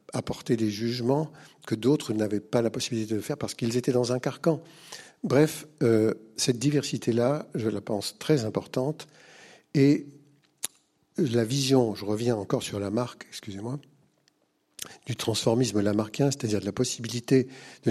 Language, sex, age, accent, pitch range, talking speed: French, male, 50-69, French, 105-145 Hz, 145 wpm